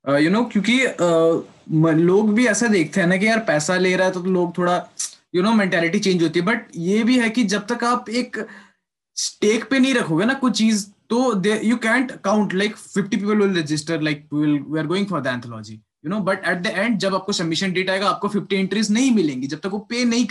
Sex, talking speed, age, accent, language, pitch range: male, 240 wpm, 20-39, native, Hindi, 155-215 Hz